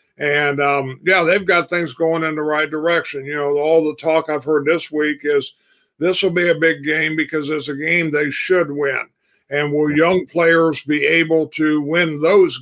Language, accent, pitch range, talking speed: English, American, 145-170 Hz, 205 wpm